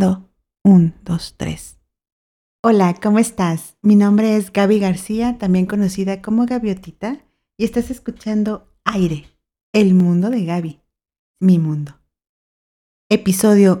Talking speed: 110 wpm